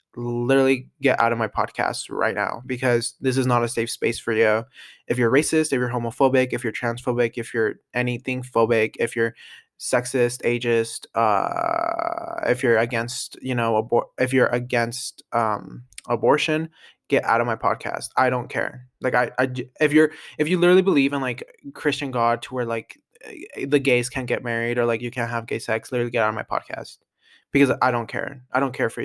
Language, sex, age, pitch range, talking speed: English, male, 20-39, 120-145 Hz, 200 wpm